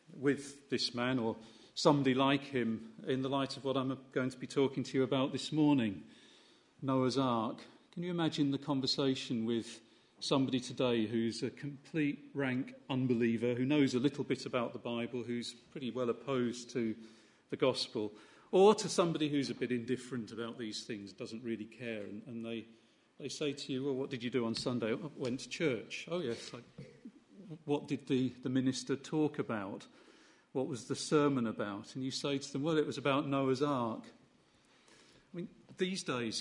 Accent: British